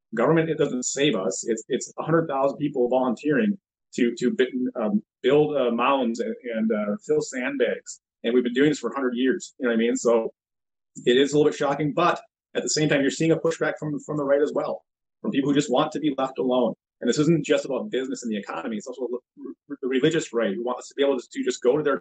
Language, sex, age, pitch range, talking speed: English, male, 30-49, 125-165 Hz, 250 wpm